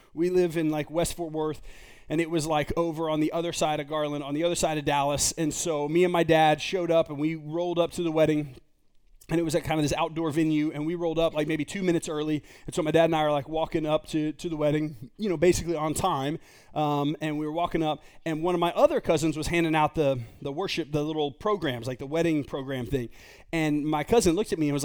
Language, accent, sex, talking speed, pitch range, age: English, American, male, 270 wpm, 150-180 Hz, 30-49